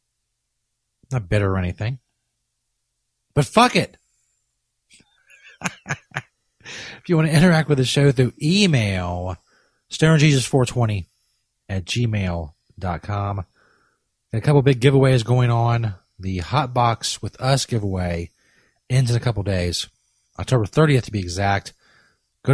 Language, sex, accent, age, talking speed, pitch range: English, male, American, 30-49, 115 wpm, 105-135 Hz